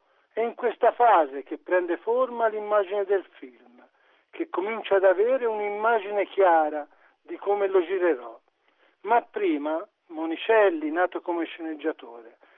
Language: Italian